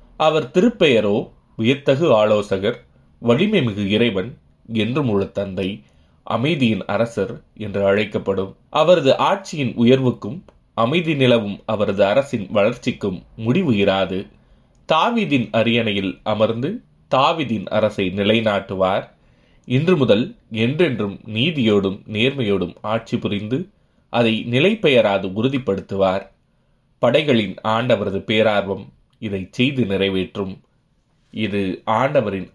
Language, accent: Tamil, native